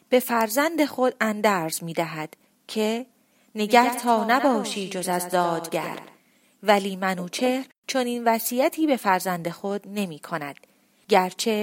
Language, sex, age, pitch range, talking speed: Persian, female, 30-49, 185-235 Hz, 110 wpm